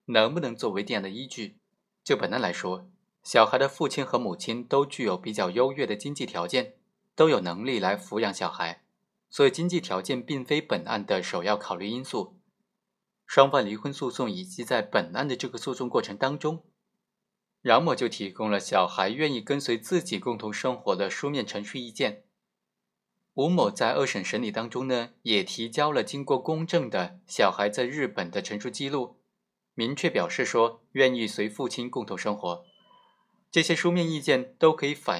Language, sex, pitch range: Chinese, male, 115-175 Hz